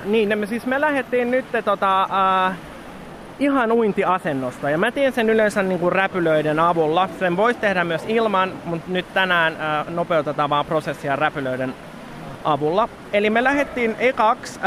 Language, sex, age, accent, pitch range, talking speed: Finnish, male, 20-39, native, 170-225 Hz, 150 wpm